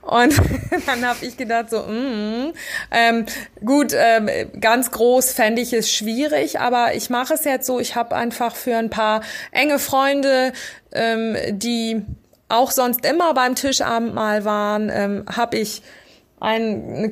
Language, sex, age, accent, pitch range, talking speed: German, female, 20-39, German, 215-245 Hz, 155 wpm